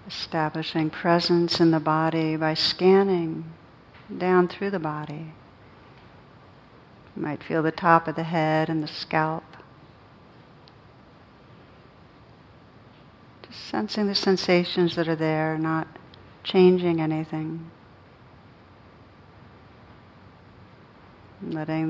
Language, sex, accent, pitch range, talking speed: English, female, American, 145-165 Hz, 90 wpm